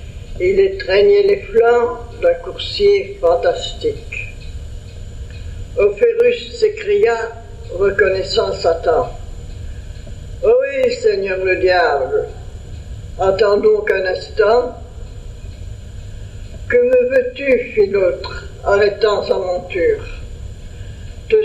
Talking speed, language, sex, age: 85 wpm, French, female, 60-79